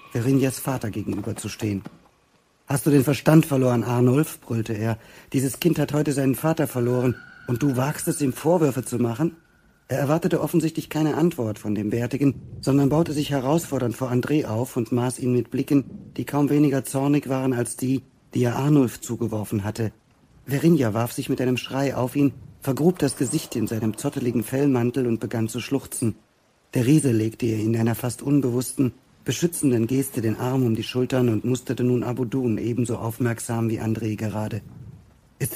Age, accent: 50-69, German